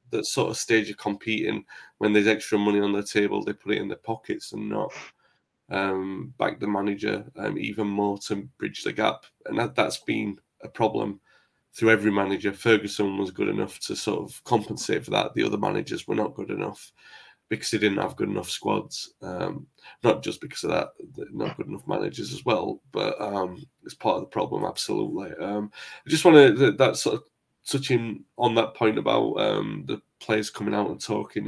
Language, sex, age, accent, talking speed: English, male, 20-39, British, 200 wpm